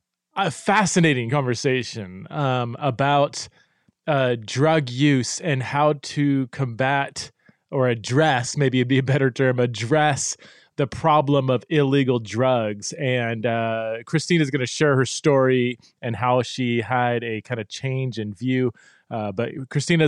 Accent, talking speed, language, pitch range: American, 145 wpm, English, 120-145 Hz